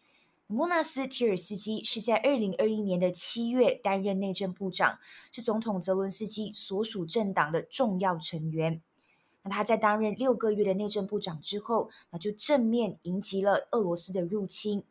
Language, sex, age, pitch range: Chinese, female, 20-39, 185-230 Hz